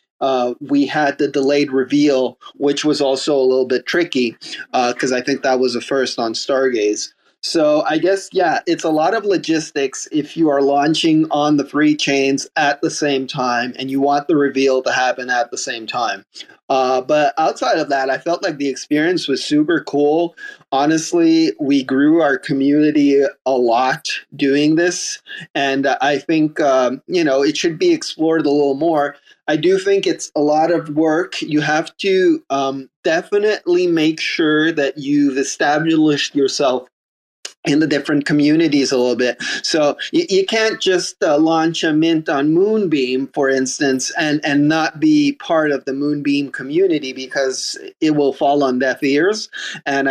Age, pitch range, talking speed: 30-49, 135-170 Hz, 175 wpm